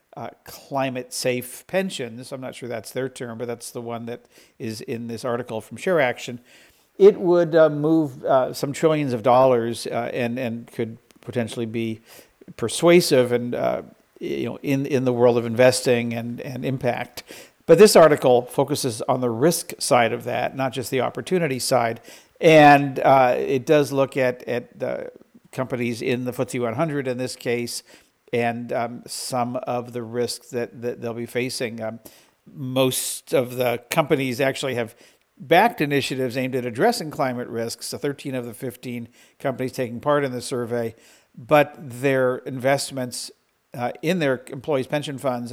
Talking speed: 165 wpm